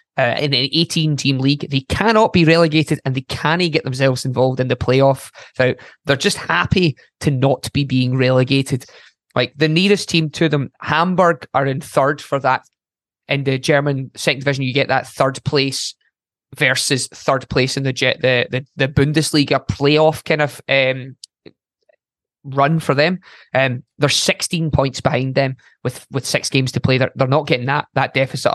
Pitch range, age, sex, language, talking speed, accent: 130-155 Hz, 20-39, male, English, 180 wpm, British